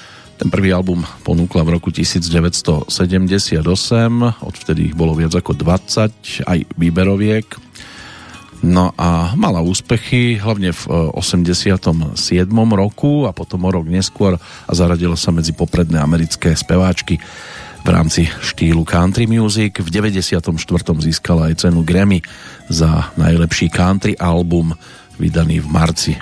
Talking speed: 120 wpm